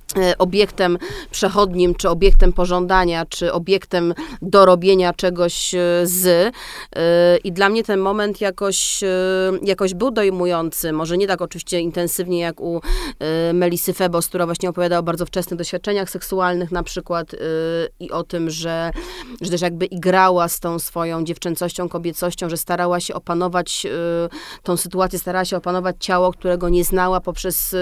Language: Polish